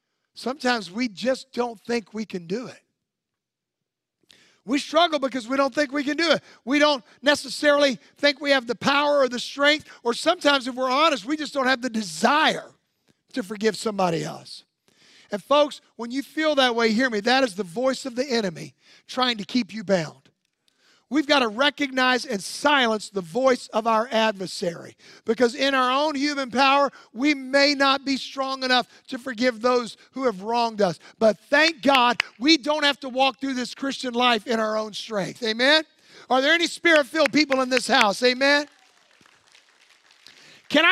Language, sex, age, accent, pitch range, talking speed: English, male, 50-69, American, 245-315 Hz, 180 wpm